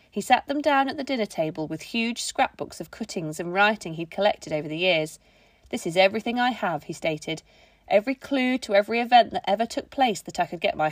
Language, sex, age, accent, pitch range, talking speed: English, female, 40-59, British, 165-240 Hz, 225 wpm